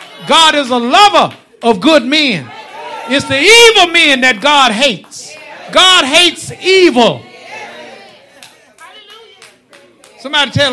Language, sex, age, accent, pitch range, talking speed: English, male, 50-69, American, 160-270 Hz, 105 wpm